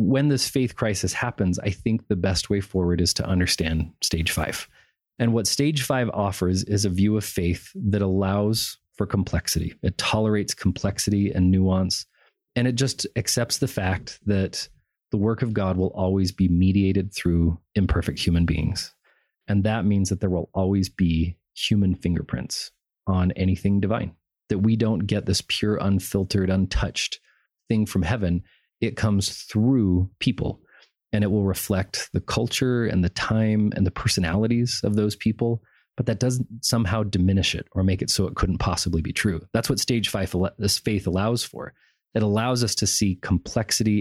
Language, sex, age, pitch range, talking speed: English, male, 30-49, 95-110 Hz, 170 wpm